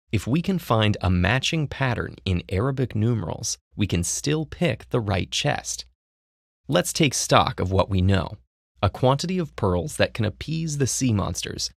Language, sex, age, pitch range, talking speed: English, male, 30-49, 90-125 Hz, 175 wpm